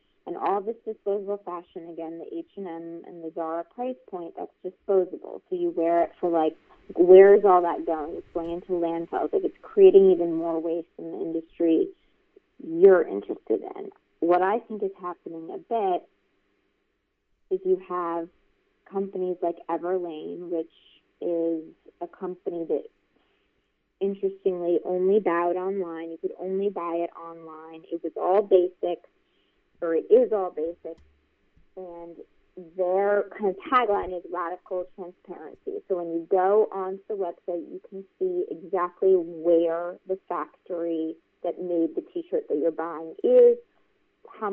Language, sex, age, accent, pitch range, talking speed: English, female, 30-49, American, 170-215 Hz, 150 wpm